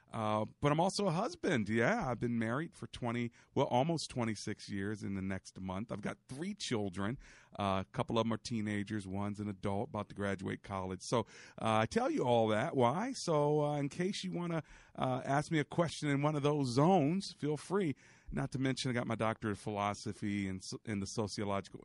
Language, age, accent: English, 40-59, American